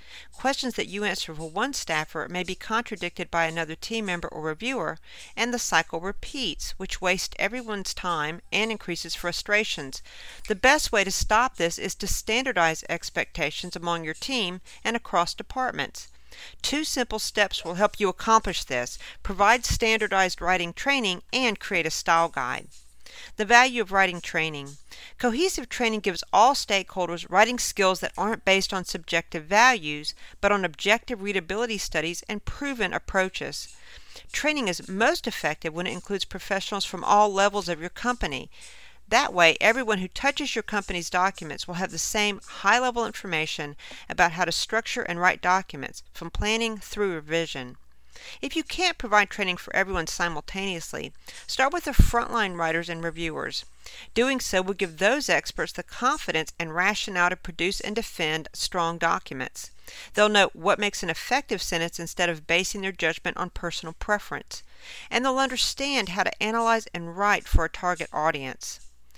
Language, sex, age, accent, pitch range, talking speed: English, female, 50-69, American, 170-225 Hz, 160 wpm